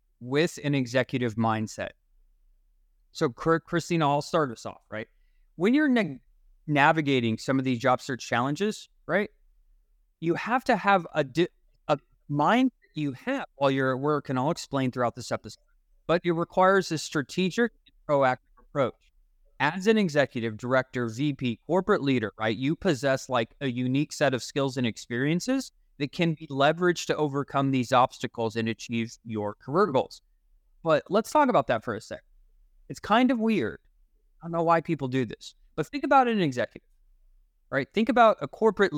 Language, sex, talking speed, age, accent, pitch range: English, male, 170 wpm, 30-49, American, 120-170 Hz